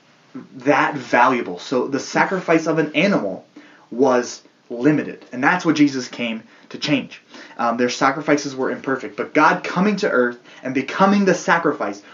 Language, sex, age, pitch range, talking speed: English, male, 20-39, 125-165 Hz, 155 wpm